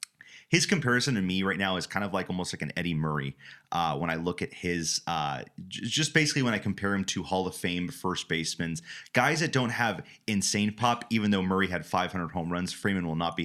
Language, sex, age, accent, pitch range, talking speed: English, male, 30-49, American, 85-105 Hz, 230 wpm